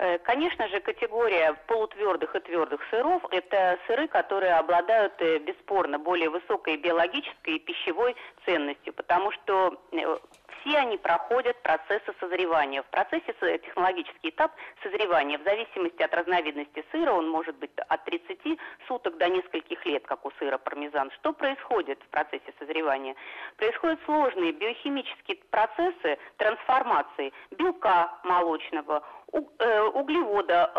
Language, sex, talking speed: Russian, female, 120 wpm